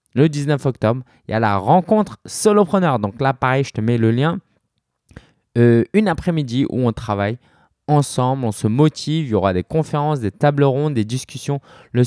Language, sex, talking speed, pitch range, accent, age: French, male, 190 wpm, 110-145 Hz, French, 20-39